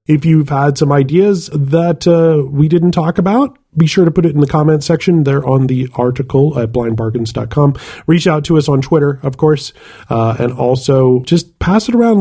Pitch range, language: 120-155 Hz, English